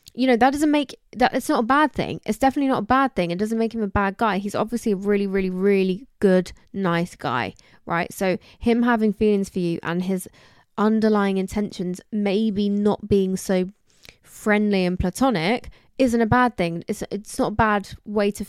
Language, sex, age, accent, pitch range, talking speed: English, female, 20-39, British, 190-230 Hz, 200 wpm